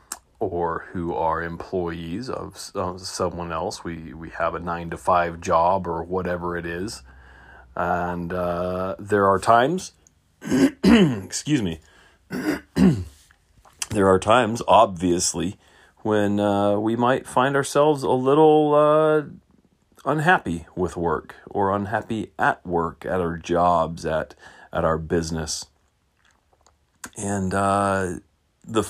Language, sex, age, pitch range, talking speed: English, male, 40-59, 80-105 Hz, 115 wpm